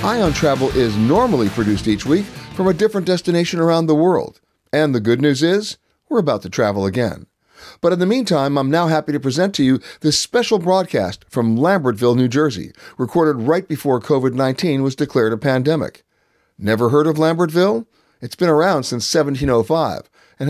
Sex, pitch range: male, 125-185 Hz